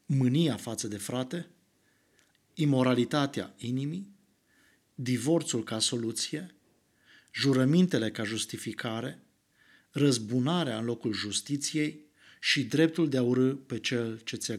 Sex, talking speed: male, 105 wpm